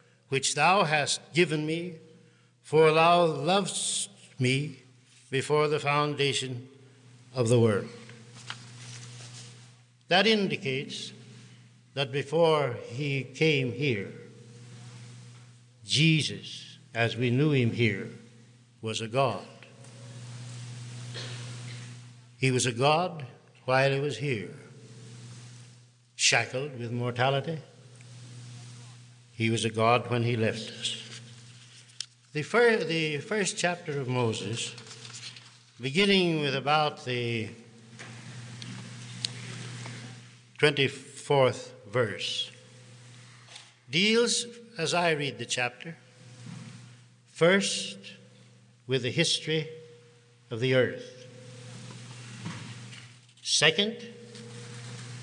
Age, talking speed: 60-79, 85 wpm